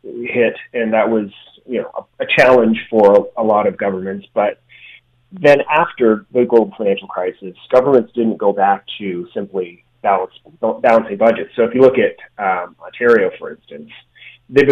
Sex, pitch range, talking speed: male, 100-120 Hz, 170 wpm